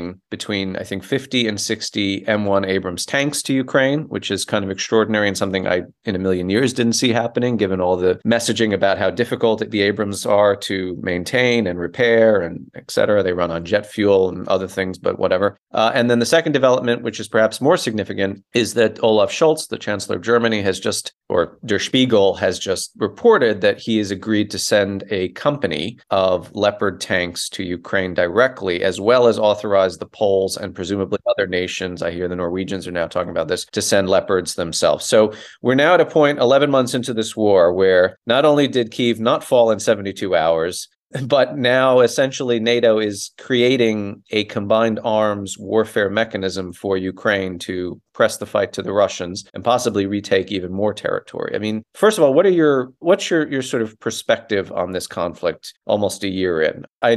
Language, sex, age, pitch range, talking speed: English, male, 30-49, 95-115 Hz, 195 wpm